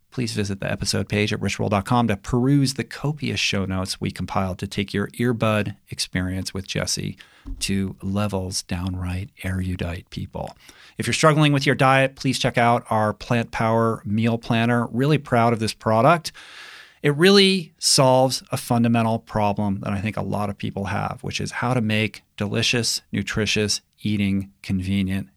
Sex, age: male, 40-59